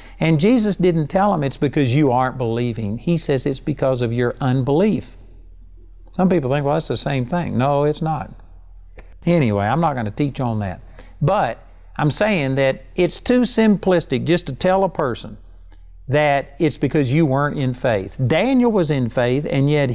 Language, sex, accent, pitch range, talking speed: English, male, American, 110-155 Hz, 185 wpm